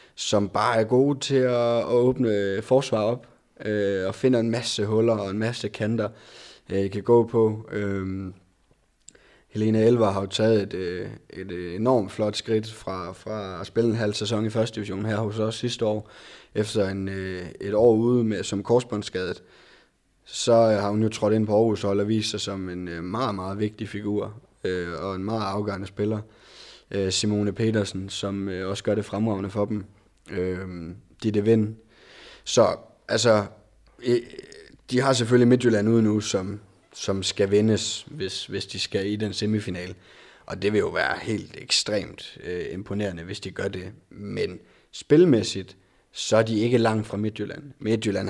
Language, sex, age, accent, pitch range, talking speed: Danish, male, 20-39, native, 95-115 Hz, 175 wpm